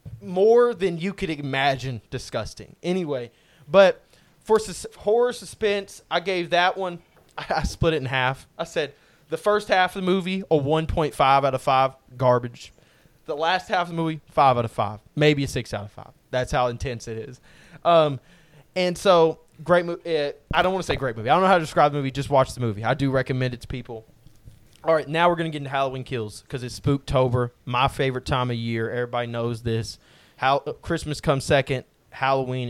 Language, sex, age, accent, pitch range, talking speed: English, male, 20-39, American, 130-165 Hz, 205 wpm